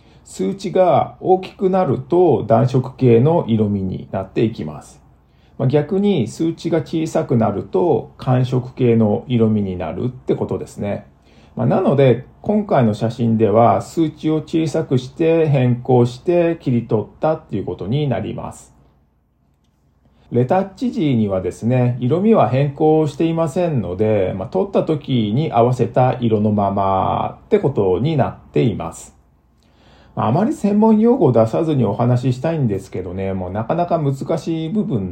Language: Japanese